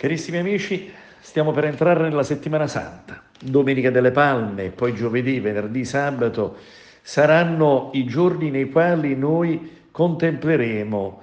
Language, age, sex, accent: Italian, 50-69, male, native